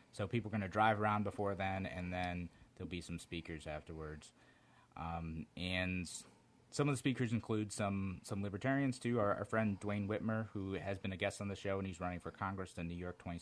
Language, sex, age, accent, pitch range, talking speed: English, male, 30-49, American, 85-105 Hz, 215 wpm